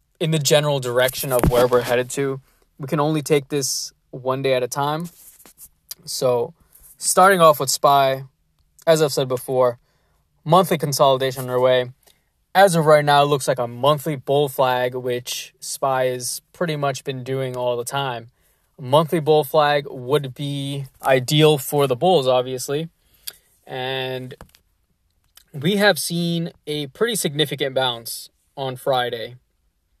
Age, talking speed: 20-39, 145 wpm